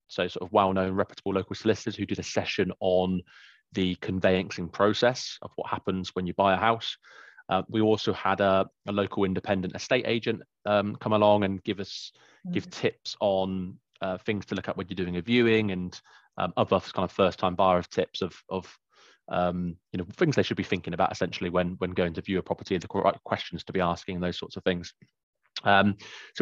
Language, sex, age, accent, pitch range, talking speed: English, male, 20-39, British, 90-110 Hz, 215 wpm